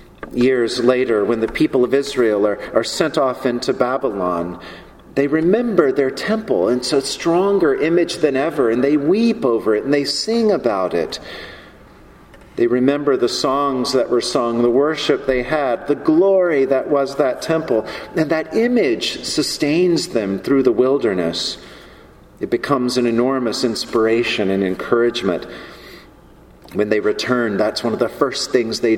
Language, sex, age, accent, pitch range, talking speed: English, male, 40-59, American, 115-165 Hz, 155 wpm